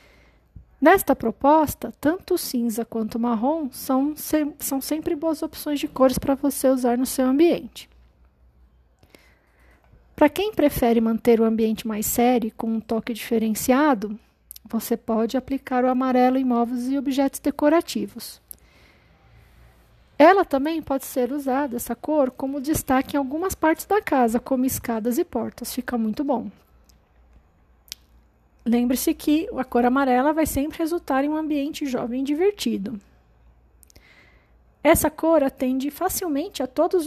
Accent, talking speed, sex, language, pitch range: Brazilian, 140 wpm, female, Portuguese, 235-295 Hz